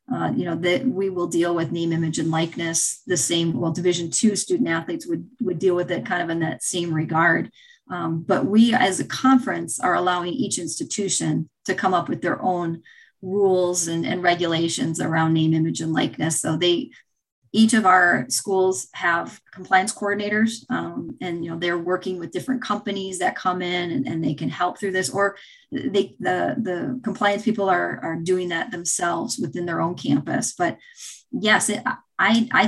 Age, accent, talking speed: 30-49, American, 185 wpm